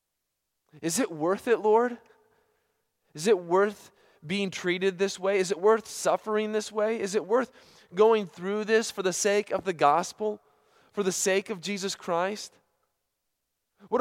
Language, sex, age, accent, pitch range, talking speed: English, male, 20-39, American, 160-215 Hz, 160 wpm